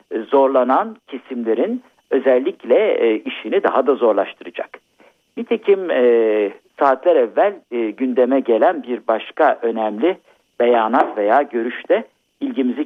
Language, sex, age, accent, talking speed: Turkish, male, 50-69, native, 105 wpm